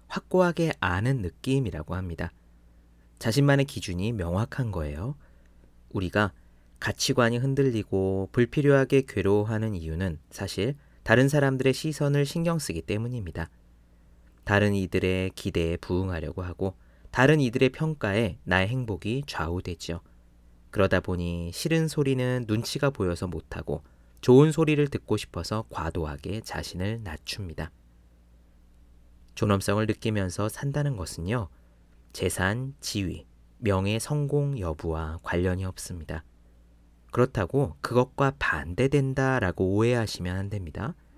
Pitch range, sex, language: 80-125 Hz, male, Korean